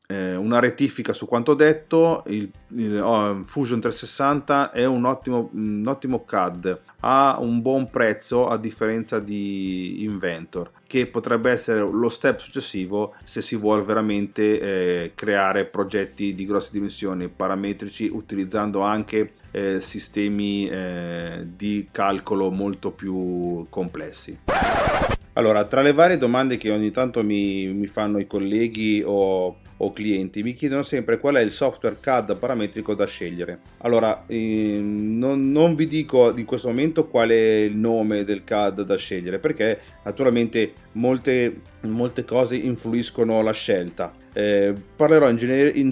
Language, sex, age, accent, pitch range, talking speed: Italian, male, 30-49, native, 100-125 Hz, 135 wpm